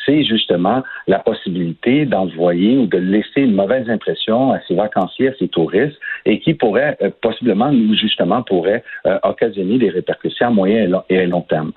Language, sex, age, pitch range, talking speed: French, male, 50-69, 105-145 Hz, 180 wpm